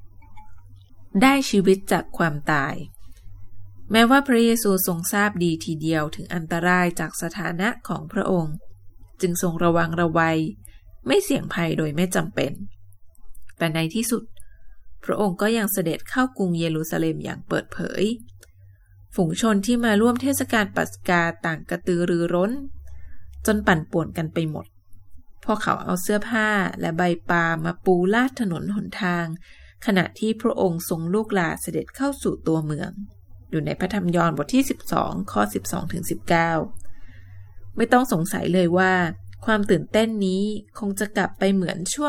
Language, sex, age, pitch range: Thai, female, 20-39, 145-205 Hz